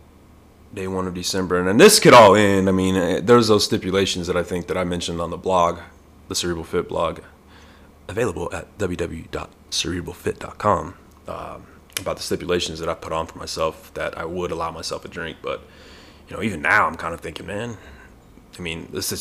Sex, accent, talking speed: male, American, 195 wpm